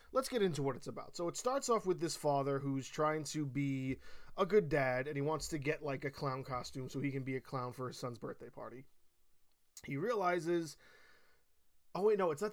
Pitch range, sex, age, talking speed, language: 135-185 Hz, male, 20-39, 225 wpm, English